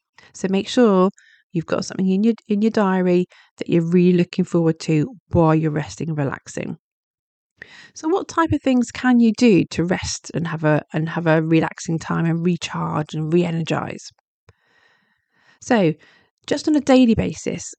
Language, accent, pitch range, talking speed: English, British, 175-230 Hz, 170 wpm